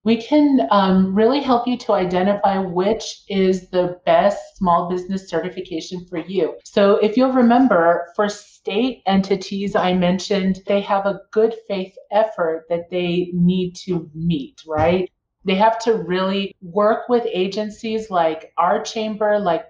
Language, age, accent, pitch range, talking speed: English, 30-49, American, 170-205 Hz, 150 wpm